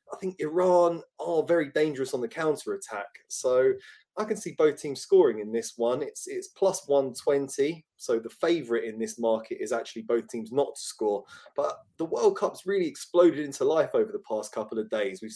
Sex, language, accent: male, English, British